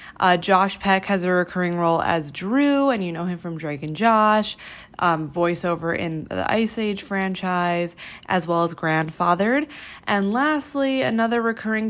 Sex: female